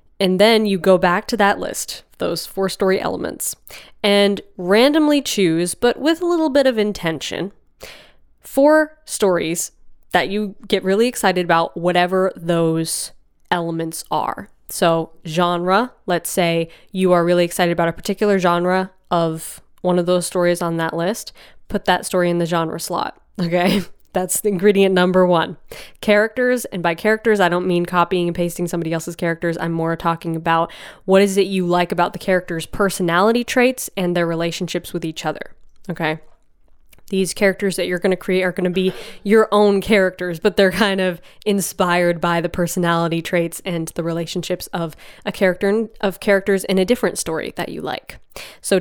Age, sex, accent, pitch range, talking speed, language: 20-39, female, American, 175-200 Hz, 170 wpm, English